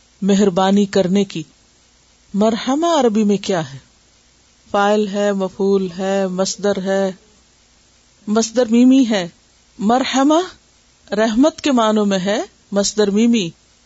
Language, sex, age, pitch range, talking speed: Urdu, female, 50-69, 190-240 Hz, 100 wpm